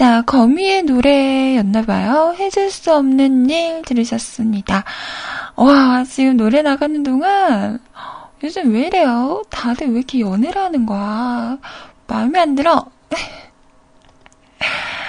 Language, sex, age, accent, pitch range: Korean, female, 20-39, native, 235-335 Hz